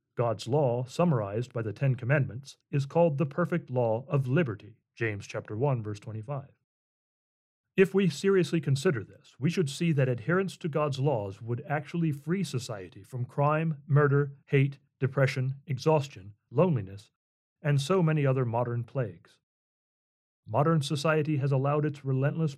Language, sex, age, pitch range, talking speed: English, male, 40-59, 120-155 Hz, 145 wpm